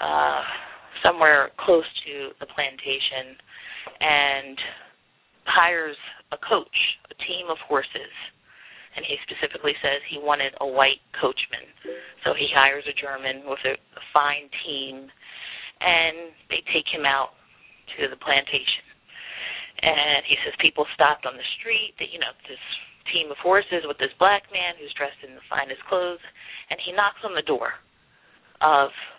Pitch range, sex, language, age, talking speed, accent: 140-175 Hz, female, English, 30-49, 150 wpm, American